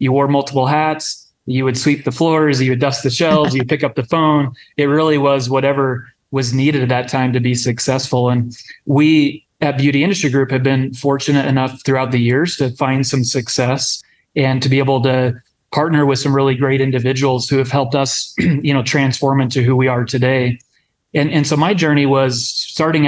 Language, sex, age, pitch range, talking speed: English, male, 30-49, 125-140 Hz, 205 wpm